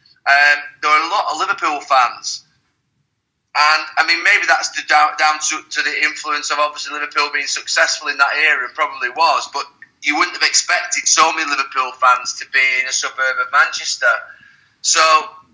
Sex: male